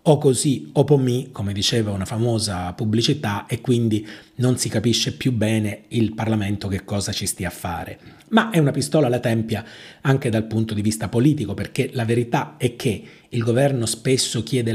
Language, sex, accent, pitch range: Italian, male, native, 100-120 Hz